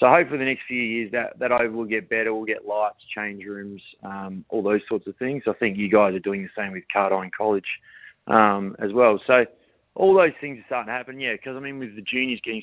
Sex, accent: male, Australian